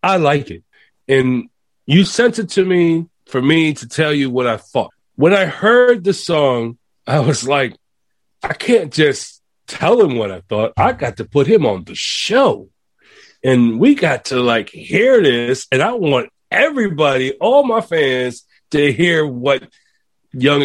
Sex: male